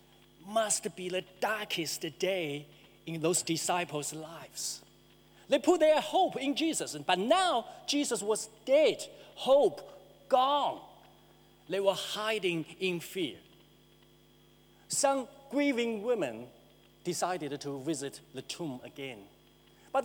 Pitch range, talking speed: 165-270 Hz, 110 wpm